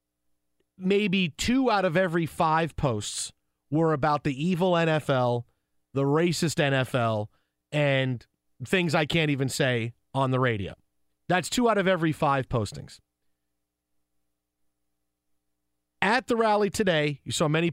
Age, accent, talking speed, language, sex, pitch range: 40-59, American, 130 wpm, English, male, 120-185 Hz